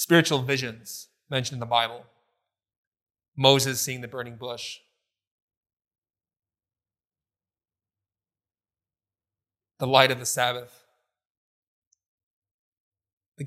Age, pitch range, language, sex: 20-39, 105-130 Hz, English, male